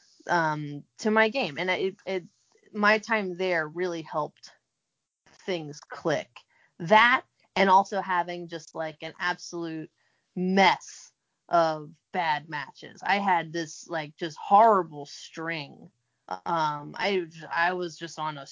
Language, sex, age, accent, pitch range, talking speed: English, female, 20-39, American, 155-190 Hz, 130 wpm